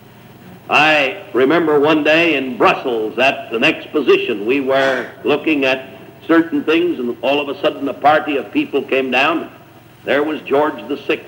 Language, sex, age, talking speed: English, male, 60-79, 160 wpm